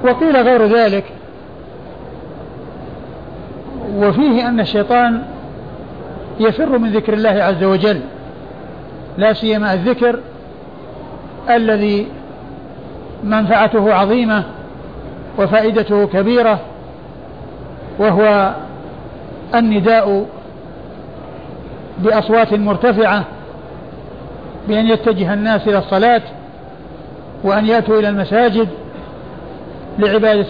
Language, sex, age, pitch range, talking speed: Arabic, male, 60-79, 200-230 Hz, 65 wpm